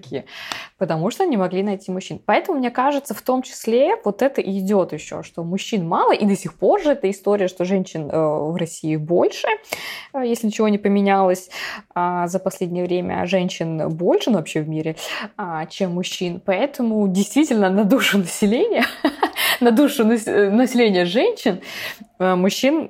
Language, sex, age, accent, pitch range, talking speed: Russian, female, 20-39, native, 180-235 Hz, 145 wpm